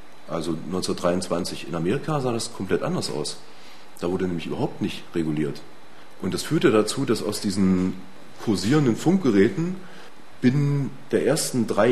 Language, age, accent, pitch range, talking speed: German, 30-49, German, 95-125 Hz, 140 wpm